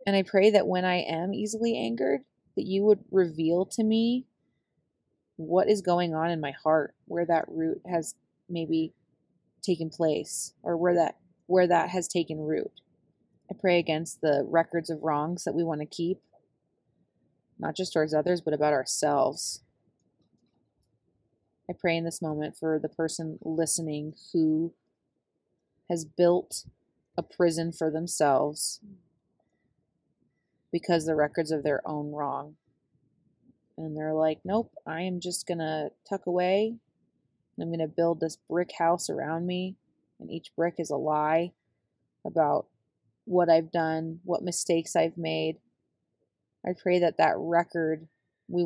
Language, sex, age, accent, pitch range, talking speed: English, female, 30-49, American, 155-180 Hz, 145 wpm